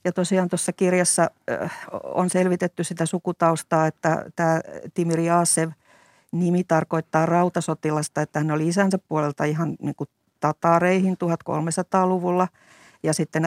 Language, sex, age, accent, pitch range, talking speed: Finnish, female, 50-69, native, 155-175 Hz, 115 wpm